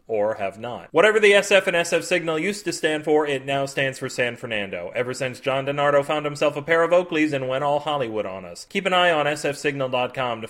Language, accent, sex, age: English, American, male, 30-49